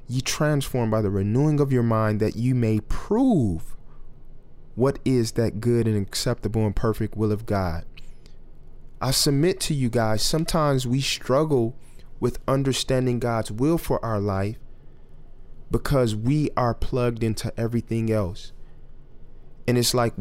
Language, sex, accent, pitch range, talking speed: English, male, American, 105-130 Hz, 145 wpm